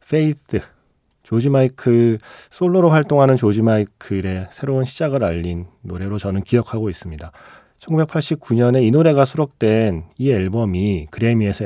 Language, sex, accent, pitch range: Korean, male, native, 95-140 Hz